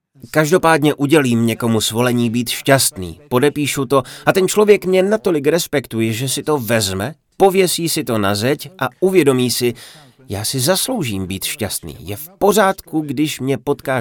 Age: 30-49